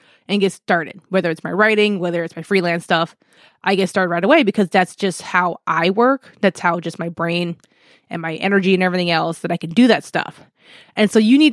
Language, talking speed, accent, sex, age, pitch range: English, 230 wpm, American, female, 20-39, 175-225 Hz